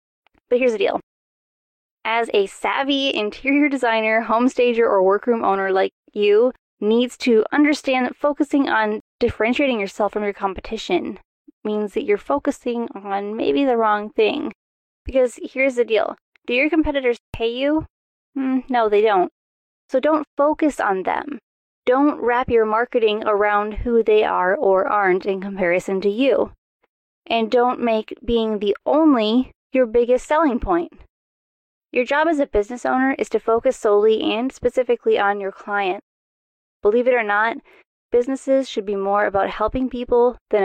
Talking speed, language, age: 155 wpm, English, 20-39